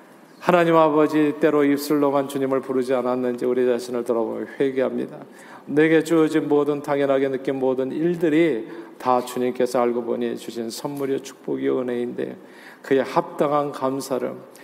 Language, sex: Korean, male